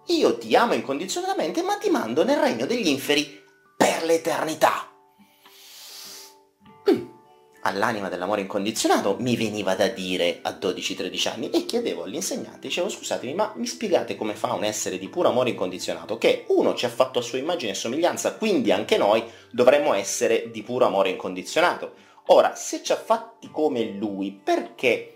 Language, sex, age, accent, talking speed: Italian, male, 30-49, native, 155 wpm